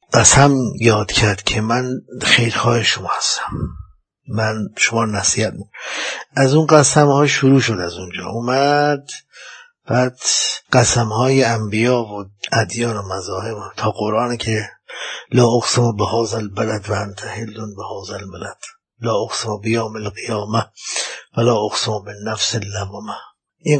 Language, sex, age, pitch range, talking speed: Persian, male, 50-69, 110-135 Hz, 130 wpm